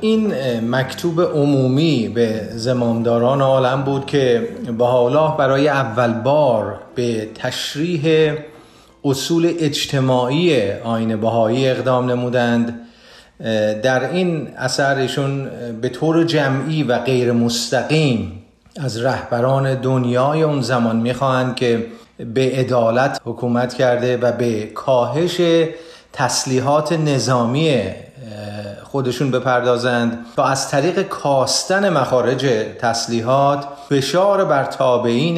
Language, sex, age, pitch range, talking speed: Persian, male, 30-49, 120-150 Hz, 95 wpm